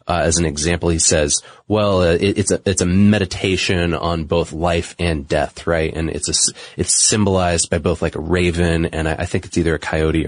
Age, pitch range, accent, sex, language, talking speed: 30-49, 85-105 Hz, American, male, English, 220 wpm